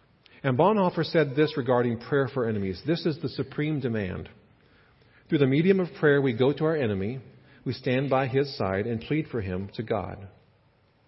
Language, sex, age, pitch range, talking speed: English, male, 50-69, 115-155 Hz, 185 wpm